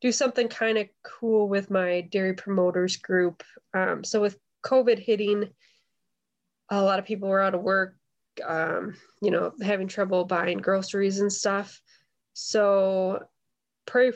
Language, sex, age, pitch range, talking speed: English, female, 20-39, 180-205 Hz, 145 wpm